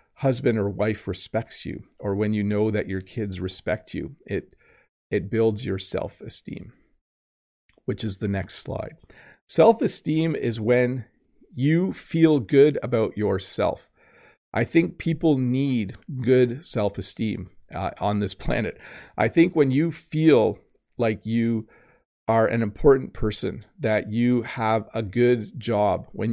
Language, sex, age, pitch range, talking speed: English, male, 40-59, 105-125 Hz, 135 wpm